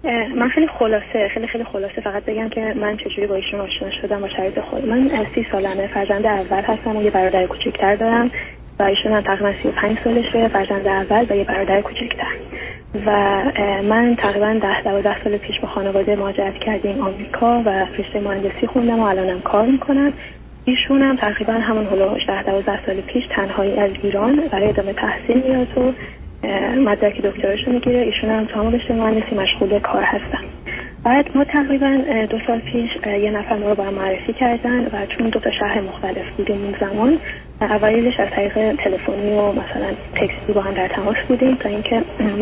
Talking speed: 175 wpm